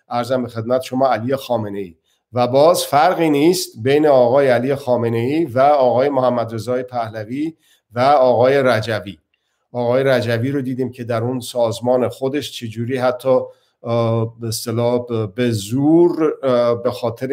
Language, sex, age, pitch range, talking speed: Persian, male, 50-69, 115-135 Hz, 130 wpm